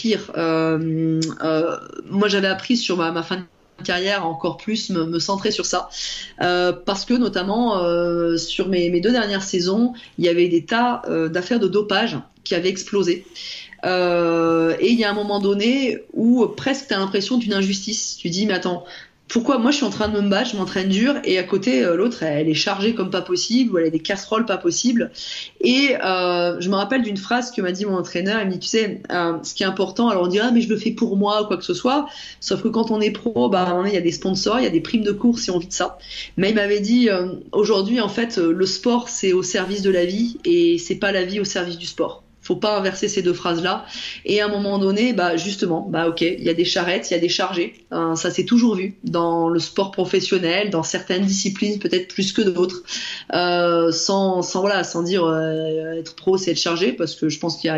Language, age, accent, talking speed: French, 20-39, French, 245 wpm